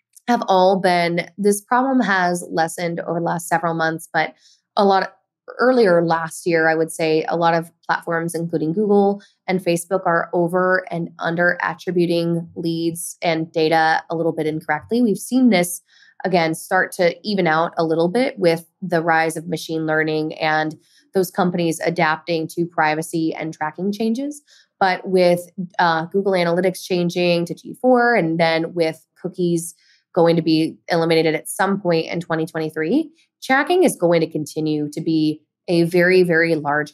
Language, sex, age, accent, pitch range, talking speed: English, female, 20-39, American, 160-185 Hz, 160 wpm